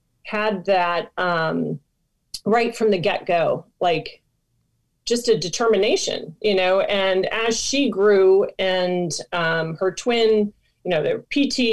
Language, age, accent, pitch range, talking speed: English, 30-49, American, 175-215 Hz, 135 wpm